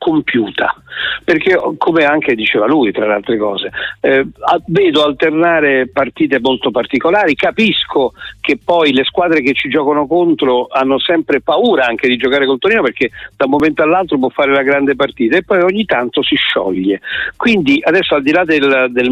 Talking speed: 175 wpm